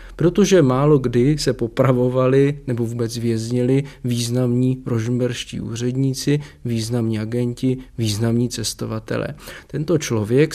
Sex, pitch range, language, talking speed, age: male, 120-150 Hz, Czech, 95 wpm, 40-59